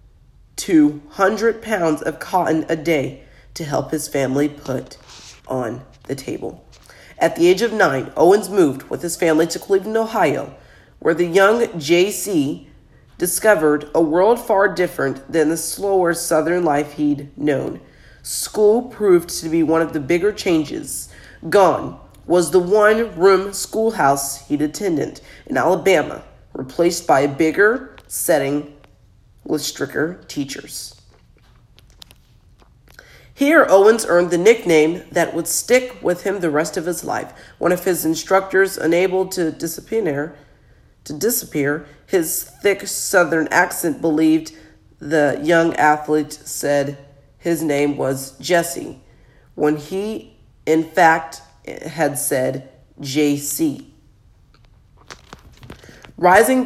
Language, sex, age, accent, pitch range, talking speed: English, female, 40-59, American, 145-190 Hz, 120 wpm